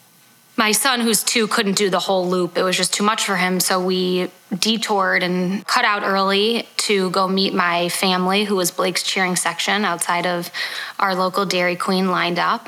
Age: 20-39